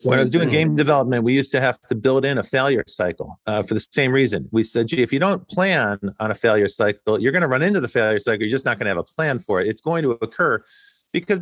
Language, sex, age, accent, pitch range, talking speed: English, male, 40-59, American, 110-150 Hz, 290 wpm